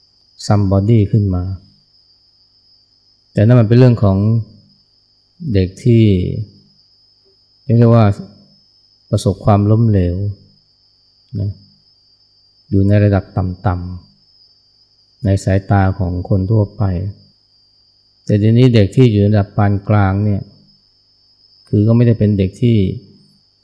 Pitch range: 100-110 Hz